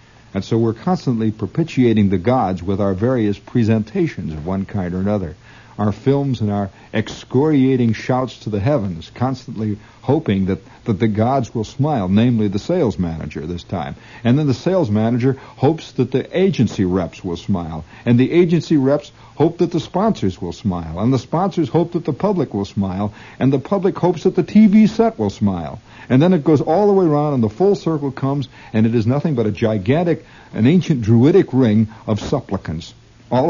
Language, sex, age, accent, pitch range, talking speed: English, male, 60-79, American, 105-135 Hz, 190 wpm